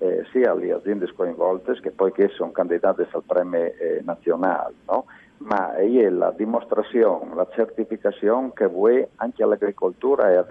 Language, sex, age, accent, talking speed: Italian, male, 50-69, native, 155 wpm